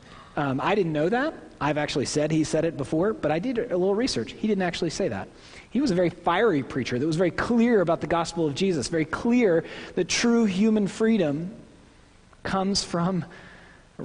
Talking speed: 200 wpm